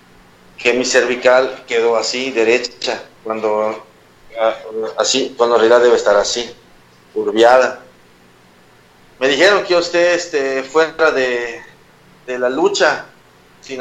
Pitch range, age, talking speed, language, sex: 110-140 Hz, 40-59, 115 wpm, Spanish, male